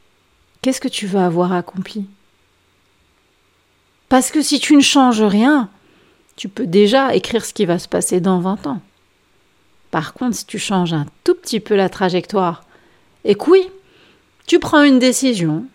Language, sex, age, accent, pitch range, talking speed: French, female, 40-59, French, 180-250 Hz, 165 wpm